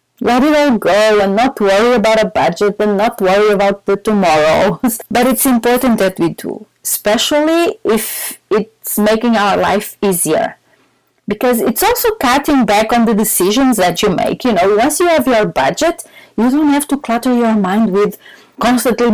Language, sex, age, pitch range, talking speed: English, female, 30-49, 210-270 Hz, 175 wpm